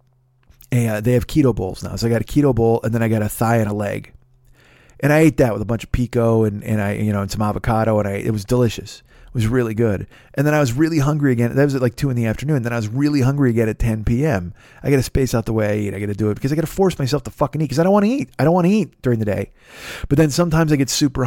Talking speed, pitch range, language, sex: 320 wpm, 115-155 Hz, English, male